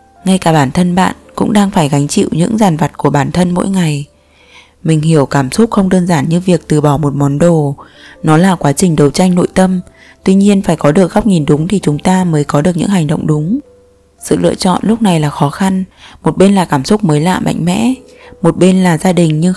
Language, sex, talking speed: Vietnamese, female, 250 wpm